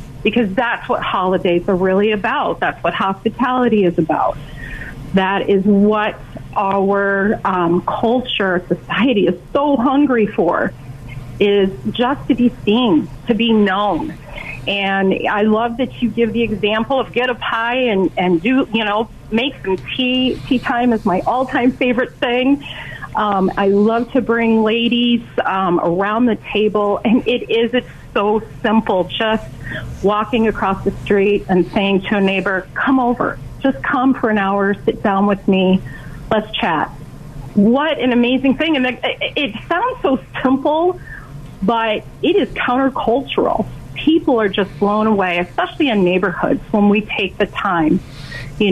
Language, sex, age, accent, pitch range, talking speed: English, female, 40-59, American, 190-245 Hz, 155 wpm